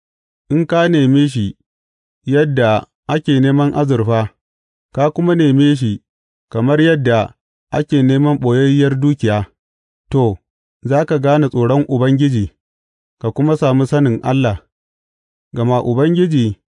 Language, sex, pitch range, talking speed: English, male, 95-145 Hz, 90 wpm